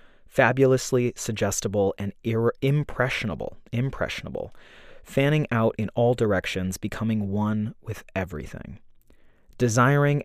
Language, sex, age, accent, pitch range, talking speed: English, male, 30-49, American, 100-125 Hz, 90 wpm